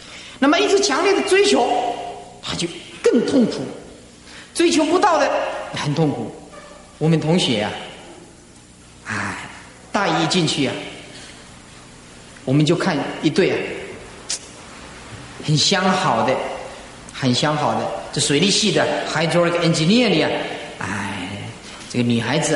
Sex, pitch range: male, 140-185 Hz